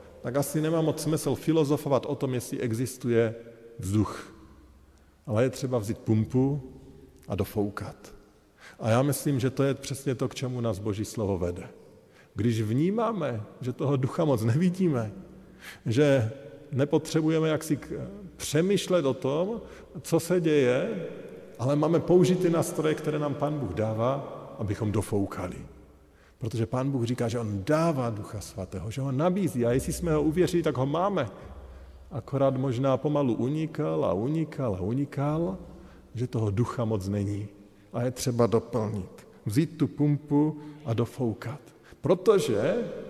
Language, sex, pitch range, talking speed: Slovak, male, 115-155 Hz, 145 wpm